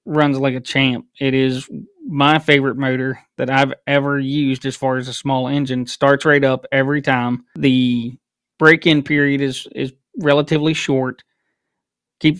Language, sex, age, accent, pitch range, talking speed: English, male, 30-49, American, 130-140 Hz, 155 wpm